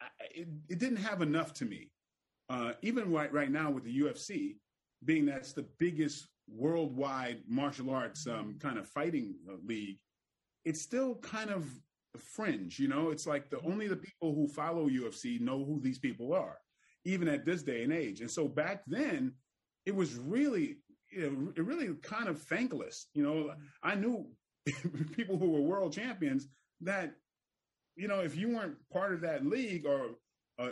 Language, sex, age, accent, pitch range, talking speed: English, male, 30-49, American, 140-200 Hz, 175 wpm